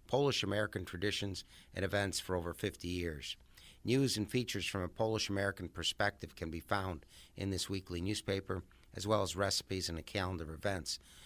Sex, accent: male, American